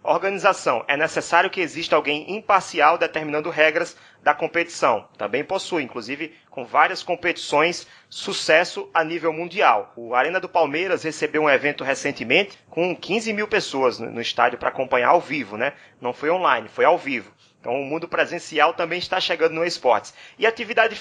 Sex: male